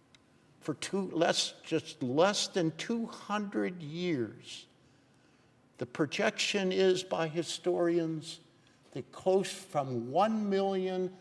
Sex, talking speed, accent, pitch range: male, 95 wpm, American, 115-150 Hz